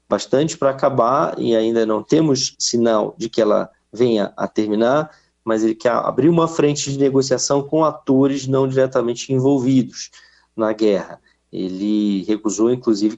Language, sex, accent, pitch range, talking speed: Portuguese, male, Brazilian, 115-140 Hz, 145 wpm